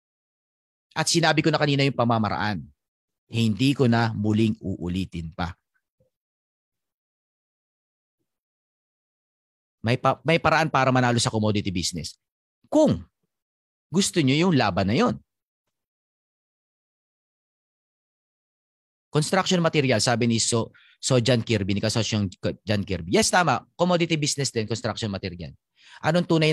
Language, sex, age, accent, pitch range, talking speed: Filipino, male, 40-59, native, 110-170 Hz, 115 wpm